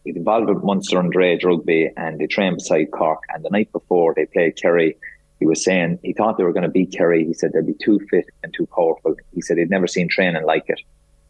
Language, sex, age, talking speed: English, male, 30-49, 245 wpm